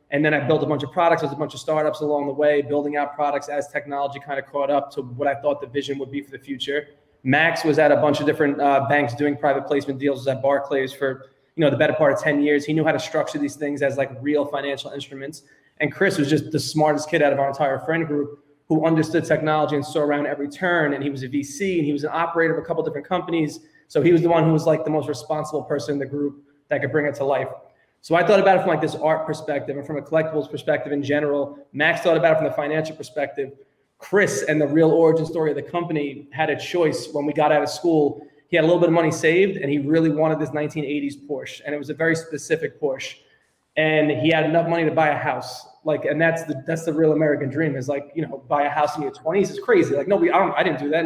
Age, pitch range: 20-39, 145-160 Hz